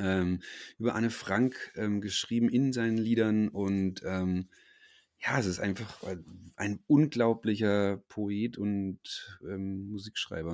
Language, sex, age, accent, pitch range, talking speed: German, male, 30-49, German, 95-120 Hz, 115 wpm